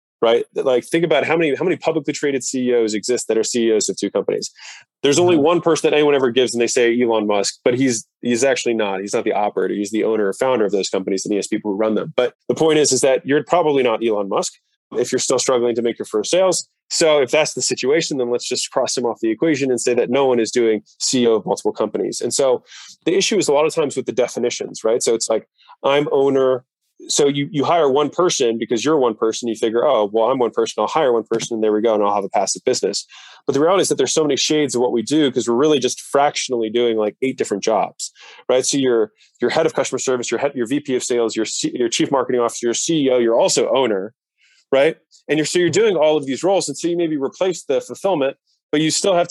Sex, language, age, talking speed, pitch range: male, English, 20-39, 265 wpm, 120-155 Hz